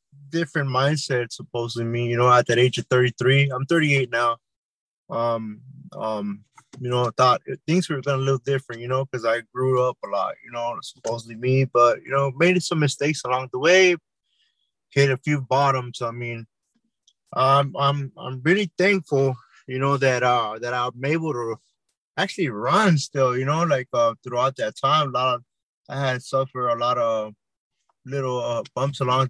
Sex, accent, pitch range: male, American, 125-155 Hz